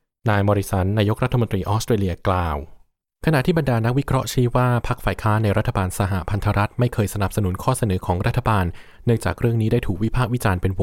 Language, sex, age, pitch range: Thai, male, 20-39, 95-115 Hz